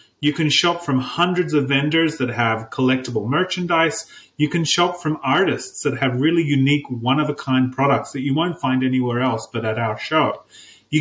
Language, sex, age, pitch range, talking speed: English, male, 30-49, 125-150 Hz, 180 wpm